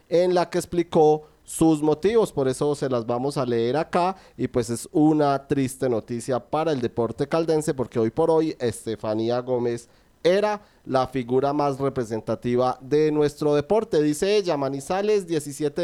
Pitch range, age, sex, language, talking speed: 140-180 Hz, 30-49, male, Spanish, 160 wpm